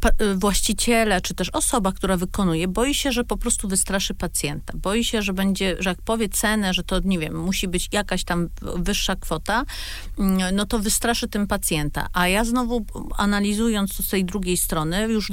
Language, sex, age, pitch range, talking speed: Polish, female, 40-59, 175-210 Hz, 180 wpm